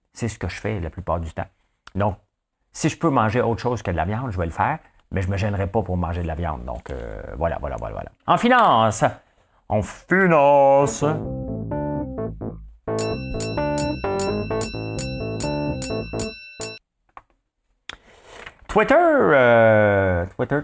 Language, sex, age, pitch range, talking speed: English, male, 50-69, 85-115 Hz, 140 wpm